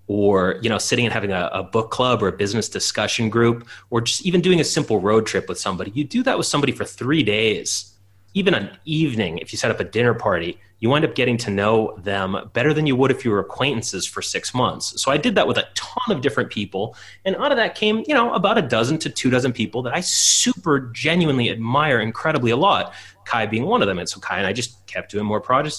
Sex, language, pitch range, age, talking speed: male, English, 100-135 Hz, 30-49, 250 wpm